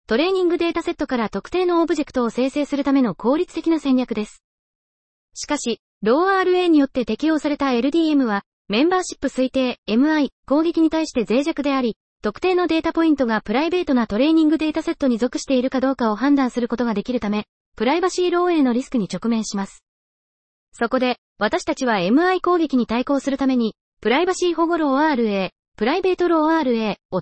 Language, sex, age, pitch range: Japanese, female, 20-39, 235-325 Hz